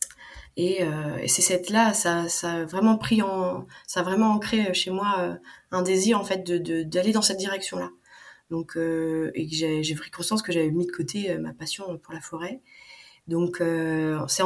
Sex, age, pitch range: female, 30-49, 160-195 Hz